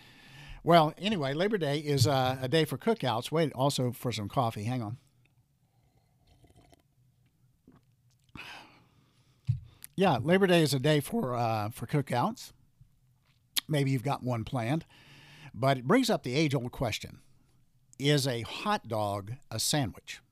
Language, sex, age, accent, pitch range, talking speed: English, male, 60-79, American, 125-155 Hz, 135 wpm